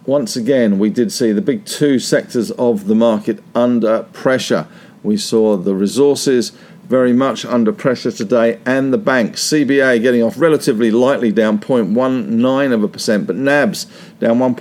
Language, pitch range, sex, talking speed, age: English, 110-140 Hz, male, 160 wpm, 50-69